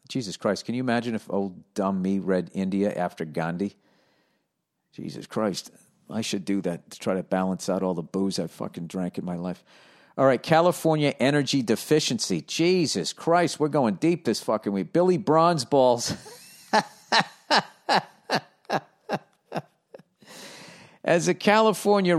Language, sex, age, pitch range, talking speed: English, male, 50-69, 125-170 Hz, 140 wpm